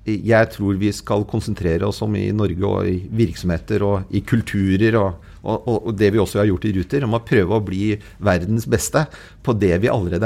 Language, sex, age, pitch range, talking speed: English, male, 40-59, 100-130 Hz, 195 wpm